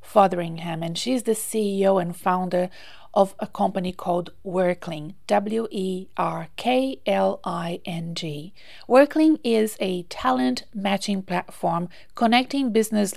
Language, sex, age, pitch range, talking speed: English, female, 40-59, 180-220 Hz, 95 wpm